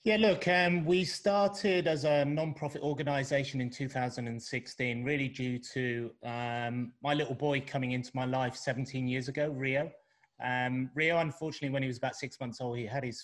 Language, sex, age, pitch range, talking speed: Arabic, male, 30-49, 125-150 Hz, 175 wpm